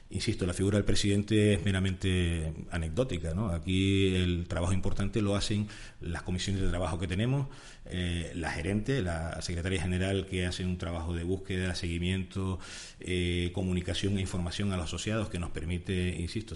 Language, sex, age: Spanish, male, 40-59